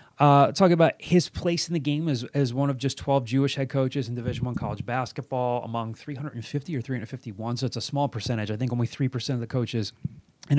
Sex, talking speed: male, 220 wpm